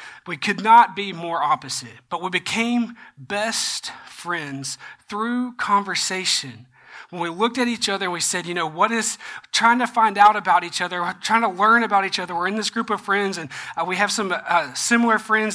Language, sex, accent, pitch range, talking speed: English, male, American, 170-205 Hz, 200 wpm